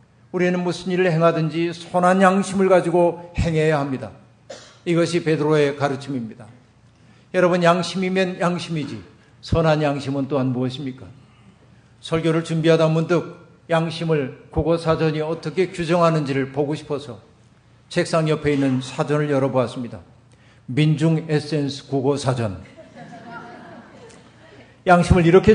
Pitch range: 130-175 Hz